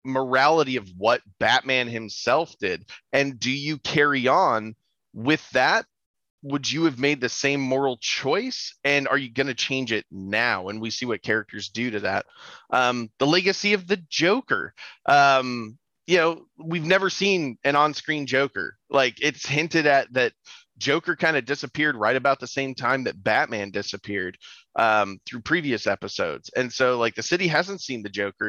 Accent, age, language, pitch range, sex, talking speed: American, 30-49, English, 115-150 Hz, male, 175 wpm